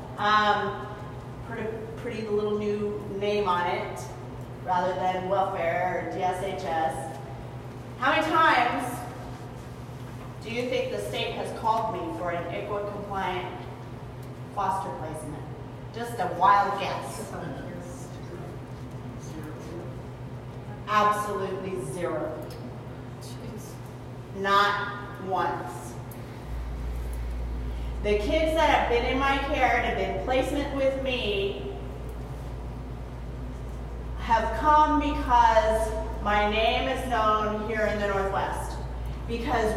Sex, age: female, 30-49